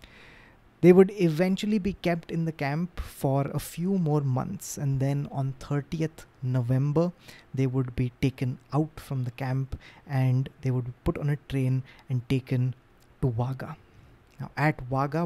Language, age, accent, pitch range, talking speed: English, 20-39, Indian, 125-145 Hz, 160 wpm